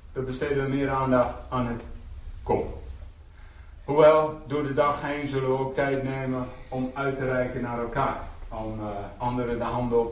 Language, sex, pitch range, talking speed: Dutch, male, 100-130 Hz, 180 wpm